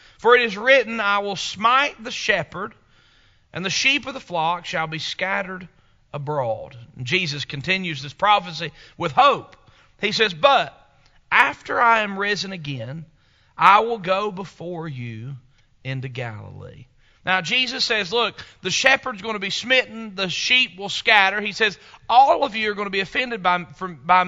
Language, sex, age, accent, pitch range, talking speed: English, male, 40-59, American, 135-230 Hz, 165 wpm